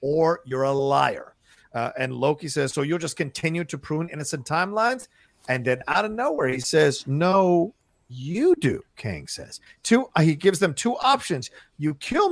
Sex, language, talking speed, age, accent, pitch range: male, English, 175 wpm, 40-59, American, 135-195 Hz